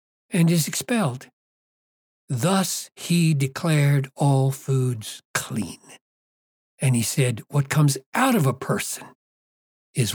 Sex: male